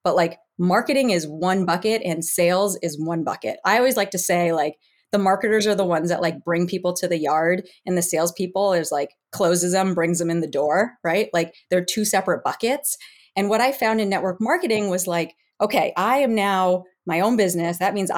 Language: English